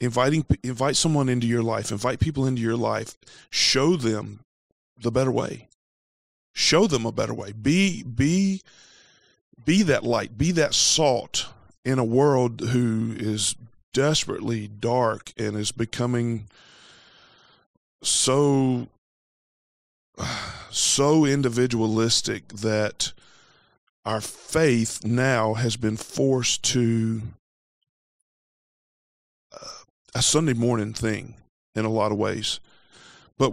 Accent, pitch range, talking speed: American, 110-135 Hz, 105 wpm